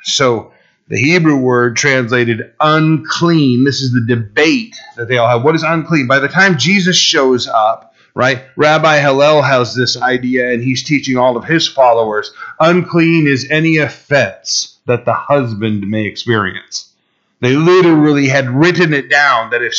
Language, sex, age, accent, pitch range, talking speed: English, male, 40-59, American, 115-140 Hz, 160 wpm